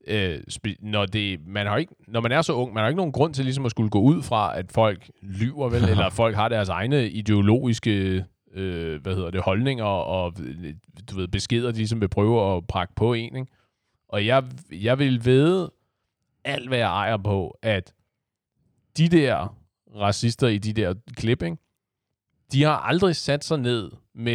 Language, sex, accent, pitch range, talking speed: Danish, male, native, 95-125 Hz, 190 wpm